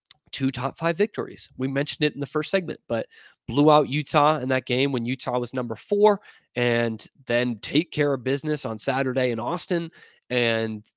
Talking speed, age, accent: 185 wpm, 20-39, American